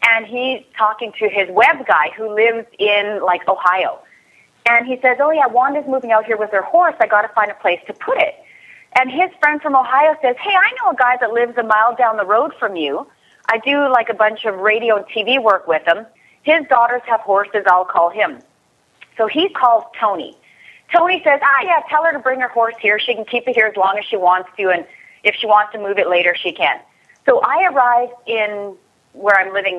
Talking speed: 235 wpm